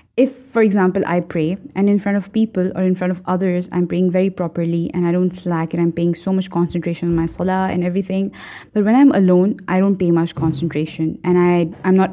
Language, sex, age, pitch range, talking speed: English, female, 20-39, 170-205 Hz, 230 wpm